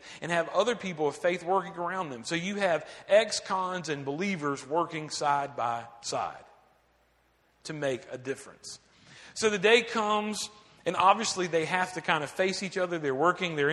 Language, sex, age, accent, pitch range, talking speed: English, male, 40-59, American, 155-210 Hz, 175 wpm